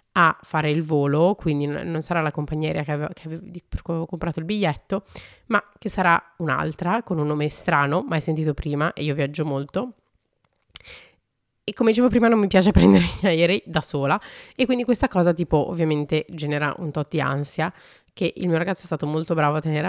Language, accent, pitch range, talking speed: Italian, native, 150-175 Hz, 205 wpm